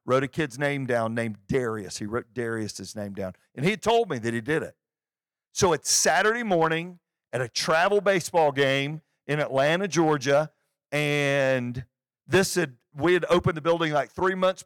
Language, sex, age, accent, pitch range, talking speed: English, male, 50-69, American, 135-190 Hz, 175 wpm